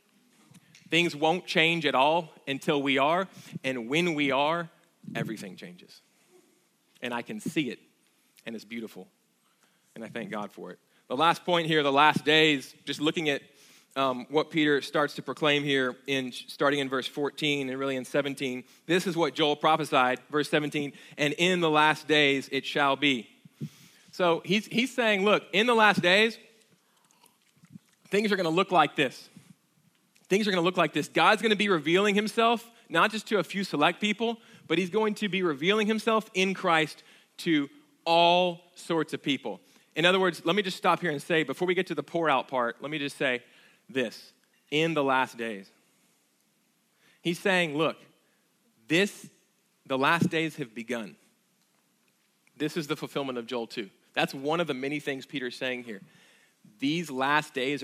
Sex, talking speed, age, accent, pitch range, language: male, 180 wpm, 30-49, American, 140-190 Hz, English